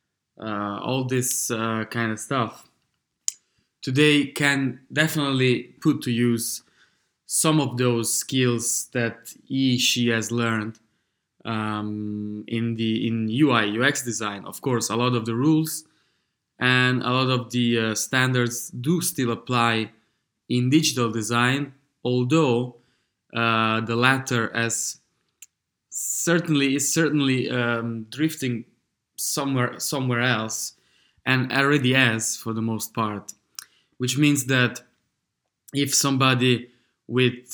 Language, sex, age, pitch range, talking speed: English, male, 20-39, 115-135 Hz, 115 wpm